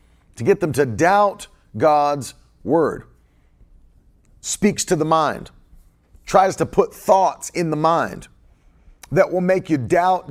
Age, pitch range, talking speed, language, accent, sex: 40-59, 135-190 Hz, 135 wpm, English, American, male